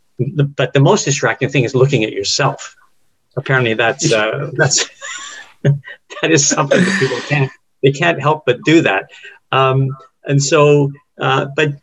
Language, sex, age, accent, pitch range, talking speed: English, male, 50-69, American, 120-145 Hz, 150 wpm